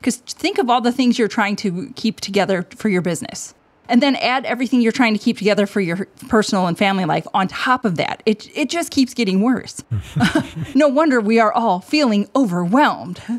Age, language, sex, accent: 30-49, English, female, American